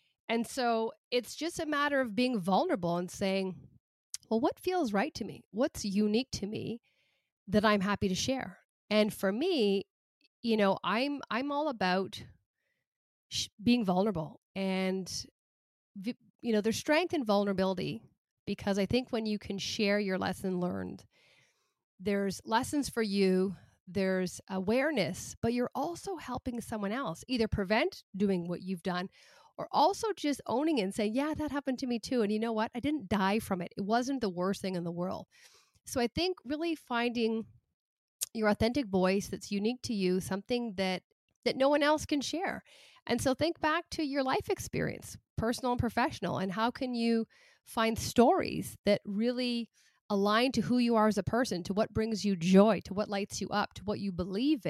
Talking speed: 180 wpm